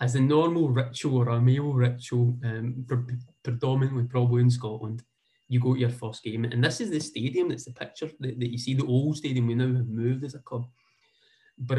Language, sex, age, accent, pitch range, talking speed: English, male, 20-39, British, 115-140 Hz, 215 wpm